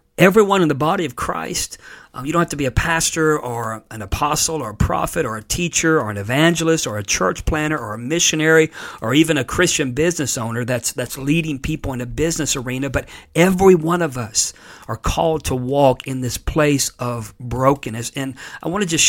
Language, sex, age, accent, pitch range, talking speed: English, male, 50-69, American, 125-155 Hz, 210 wpm